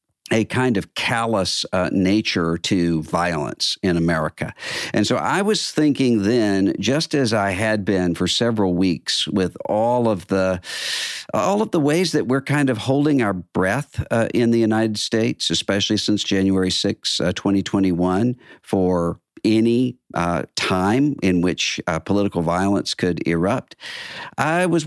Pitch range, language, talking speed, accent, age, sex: 95-115 Hz, English, 150 wpm, American, 50-69, male